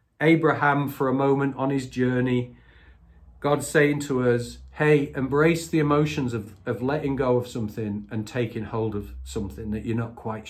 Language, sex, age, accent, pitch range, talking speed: English, male, 40-59, British, 110-150 Hz, 170 wpm